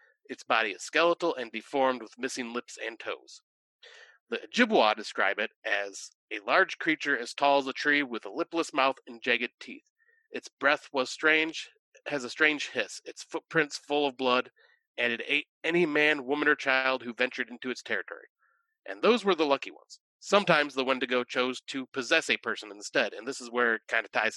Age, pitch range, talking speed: 30-49, 125-190 Hz, 195 wpm